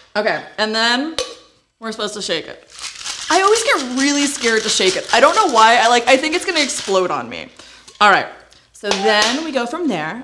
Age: 20-39